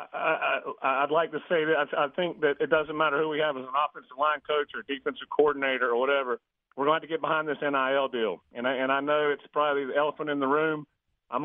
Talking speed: 260 wpm